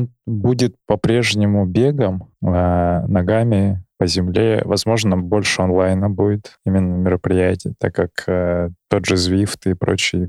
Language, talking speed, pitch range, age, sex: Russian, 120 wpm, 90-100 Hz, 20-39, male